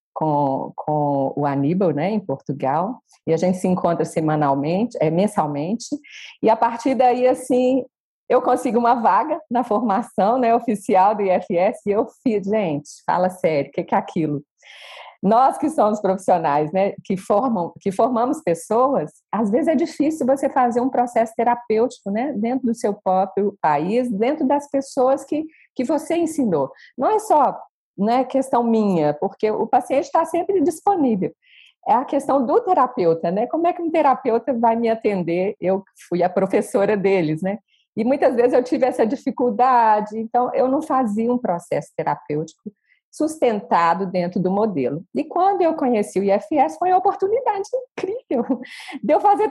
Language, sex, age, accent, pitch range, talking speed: Portuguese, female, 40-59, Brazilian, 190-280 Hz, 165 wpm